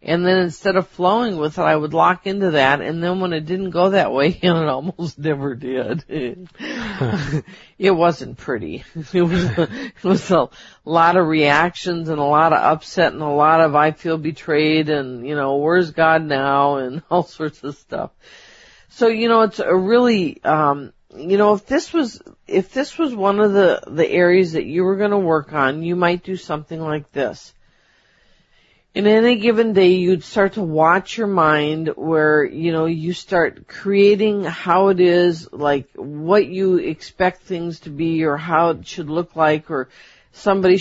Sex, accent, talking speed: female, American, 185 wpm